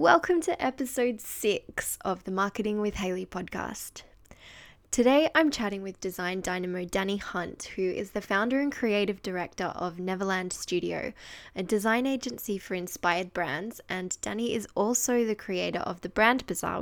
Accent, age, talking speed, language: Australian, 10-29, 155 wpm, English